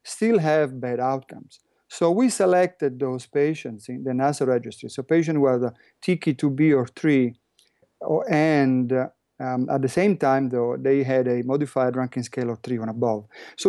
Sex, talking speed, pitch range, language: male, 165 wpm, 125-145 Hz, English